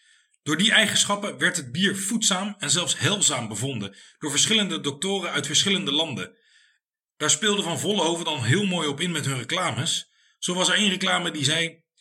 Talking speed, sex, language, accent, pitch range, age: 180 wpm, male, Dutch, Dutch, 150-200 Hz, 40-59